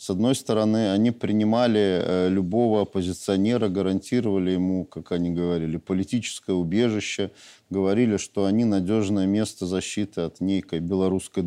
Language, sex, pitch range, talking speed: Russian, male, 95-105 Hz, 120 wpm